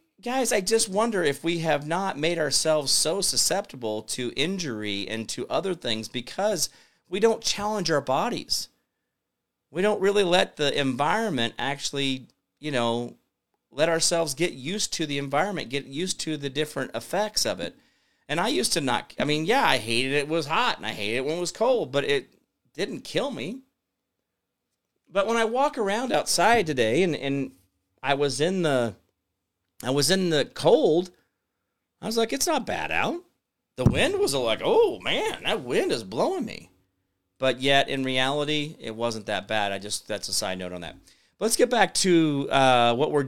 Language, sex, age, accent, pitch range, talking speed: English, male, 40-59, American, 115-180 Hz, 185 wpm